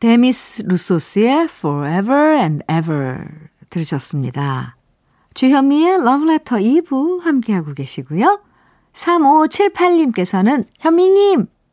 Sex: female